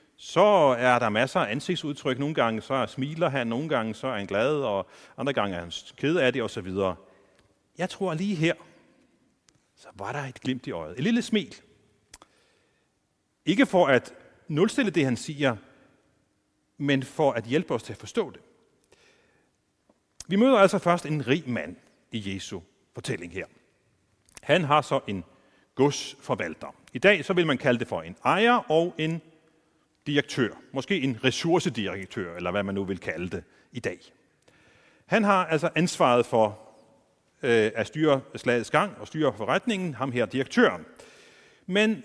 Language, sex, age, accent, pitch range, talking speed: Danish, male, 40-59, native, 120-180 Hz, 165 wpm